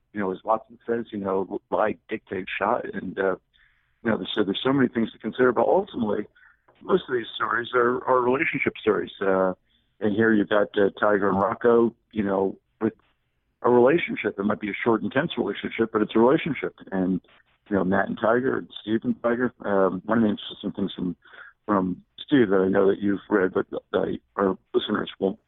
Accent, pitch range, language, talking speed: American, 95-115 Hz, English, 205 wpm